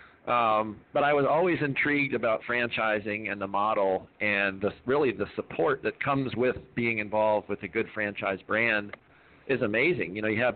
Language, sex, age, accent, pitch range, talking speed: English, male, 40-59, American, 100-120 Hz, 180 wpm